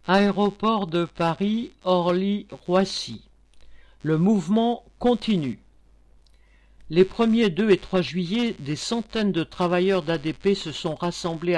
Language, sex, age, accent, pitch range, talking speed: French, male, 50-69, French, 155-200 Hz, 115 wpm